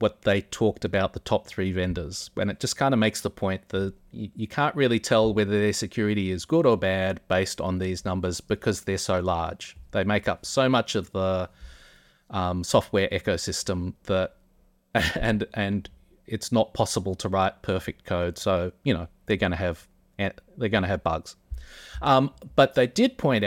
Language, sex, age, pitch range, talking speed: English, male, 30-49, 95-110 Hz, 185 wpm